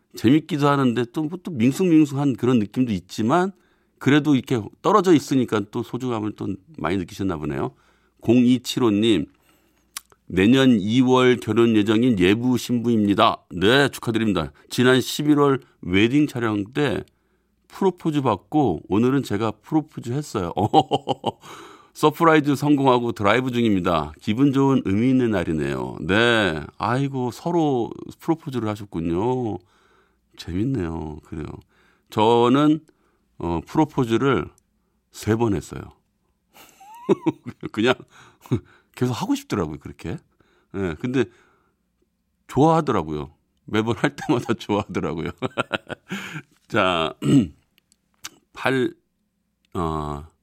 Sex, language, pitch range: male, Korean, 100-145 Hz